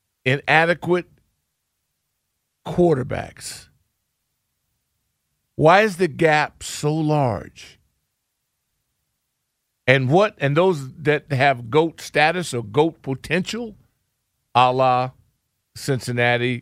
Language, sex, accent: English, male, American